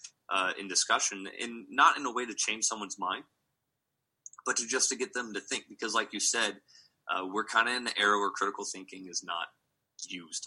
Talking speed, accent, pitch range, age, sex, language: 210 wpm, American, 100-115 Hz, 20-39, male, English